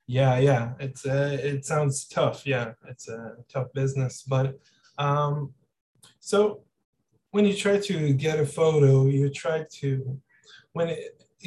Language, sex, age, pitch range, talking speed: English, male, 20-39, 130-145 Hz, 140 wpm